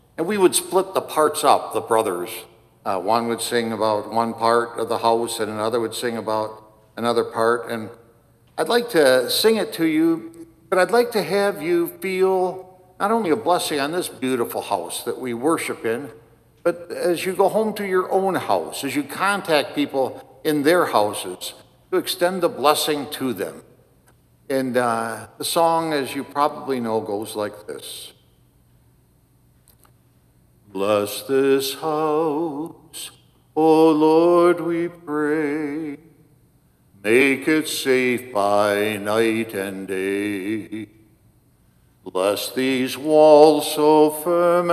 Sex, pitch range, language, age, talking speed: male, 115-170 Hz, English, 60-79, 140 wpm